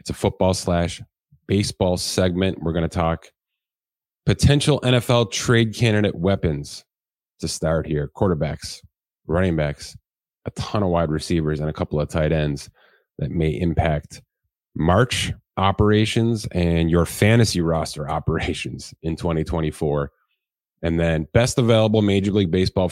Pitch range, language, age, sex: 80-105 Hz, English, 30-49, male